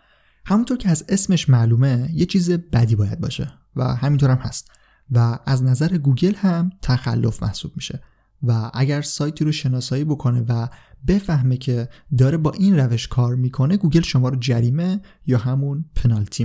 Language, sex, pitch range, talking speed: Persian, male, 125-165 Hz, 160 wpm